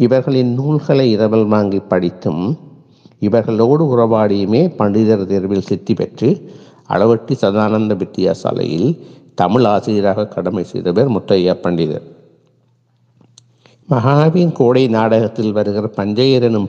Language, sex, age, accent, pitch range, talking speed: Tamil, male, 60-79, native, 105-135 Hz, 90 wpm